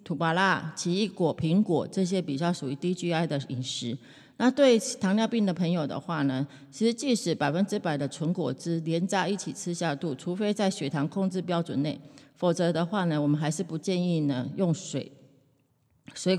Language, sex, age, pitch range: Chinese, female, 30-49, 140-185 Hz